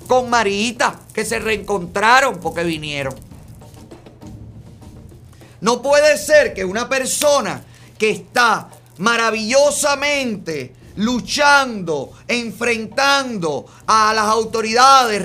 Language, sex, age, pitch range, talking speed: Spanish, male, 30-49, 200-255 Hz, 85 wpm